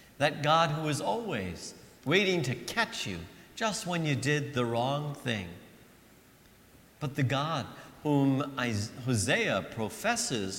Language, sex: English, male